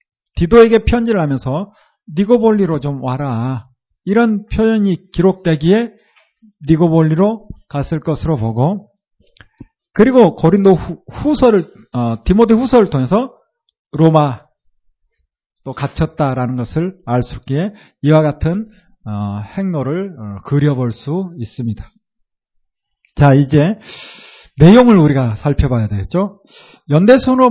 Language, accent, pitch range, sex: Korean, native, 150-220 Hz, male